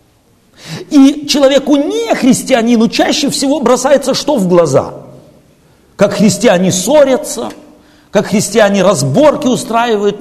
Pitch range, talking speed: 170-265 Hz, 100 wpm